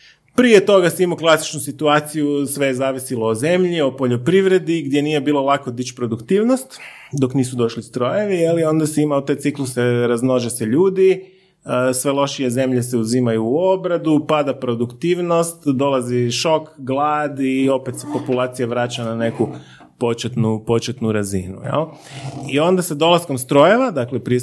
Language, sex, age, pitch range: Croatian, male, 30-49, 120-150 Hz